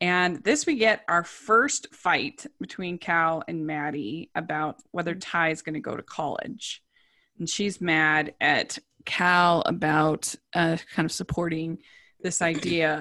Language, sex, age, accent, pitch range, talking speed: English, female, 20-39, American, 175-250 Hz, 150 wpm